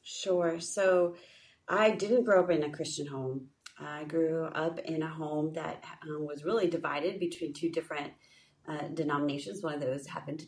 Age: 30-49